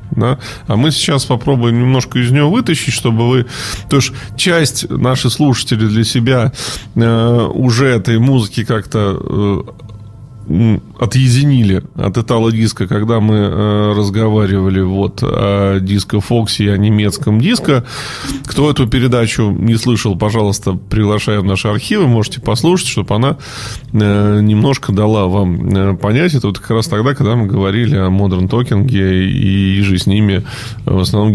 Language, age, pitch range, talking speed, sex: Russian, 20-39, 105-130 Hz, 140 wpm, male